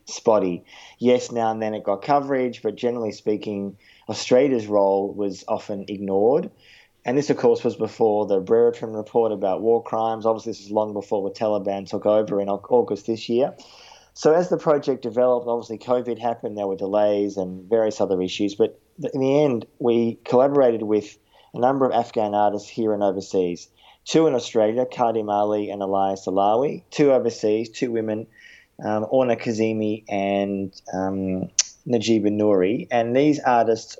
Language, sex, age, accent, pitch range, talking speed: English, male, 20-39, Australian, 100-120 Hz, 165 wpm